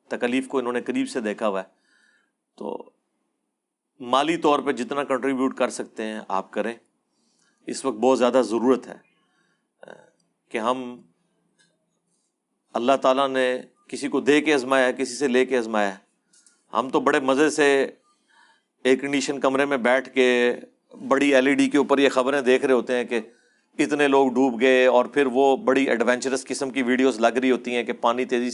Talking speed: 180 wpm